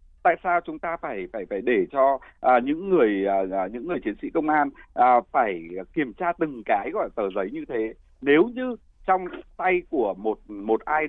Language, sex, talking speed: Vietnamese, male, 205 wpm